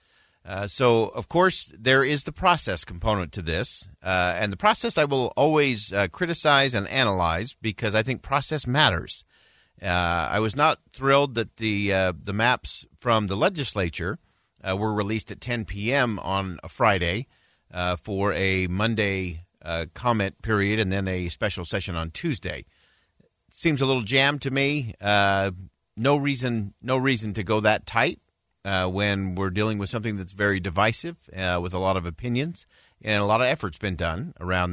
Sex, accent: male, American